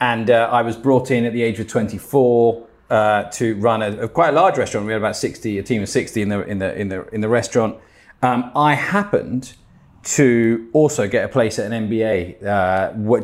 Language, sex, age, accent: English, male, 40-59, British